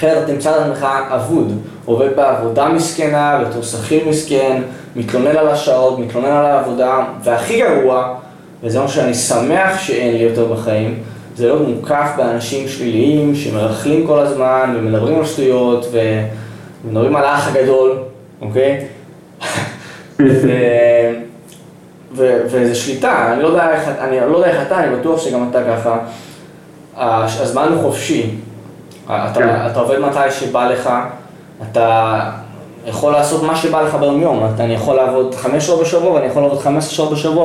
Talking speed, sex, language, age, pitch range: 140 wpm, male, Hebrew, 10-29, 120-150 Hz